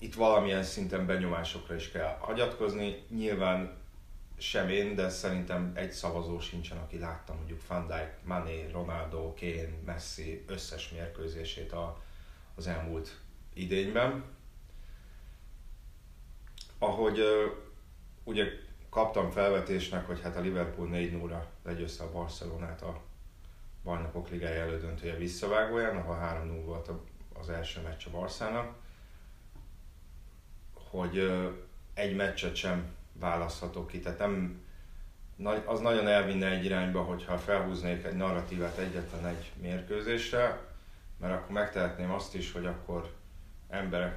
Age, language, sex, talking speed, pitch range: 30-49, Hungarian, male, 115 wpm, 85-95 Hz